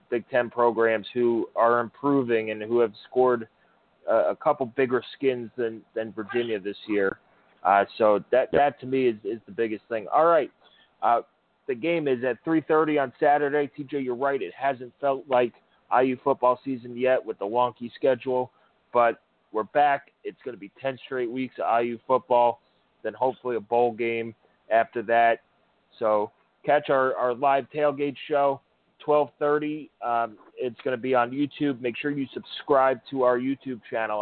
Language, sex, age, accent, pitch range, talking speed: English, male, 30-49, American, 120-135 Hz, 175 wpm